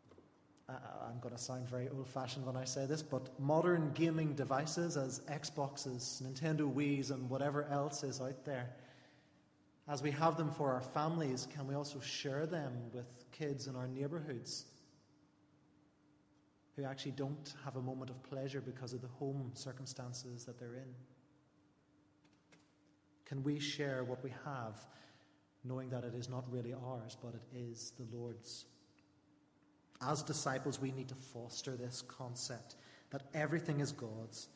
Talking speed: 150 wpm